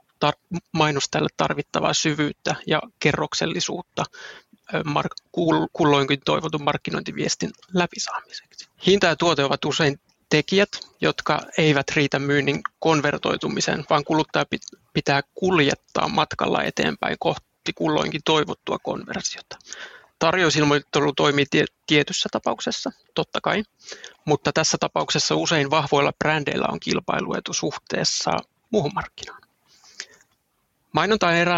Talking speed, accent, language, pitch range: 100 wpm, native, Finnish, 140-165 Hz